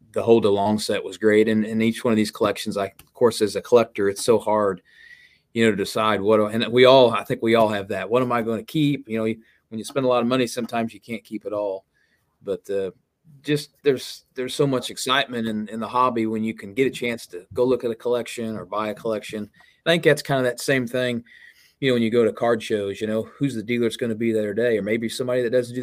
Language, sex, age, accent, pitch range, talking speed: English, male, 30-49, American, 110-125 Hz, 275 wpm